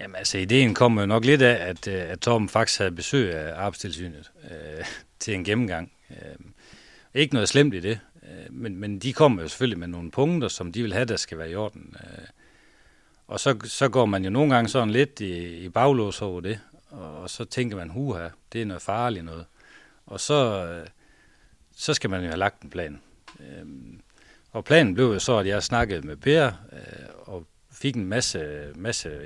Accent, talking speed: native, 200 wpm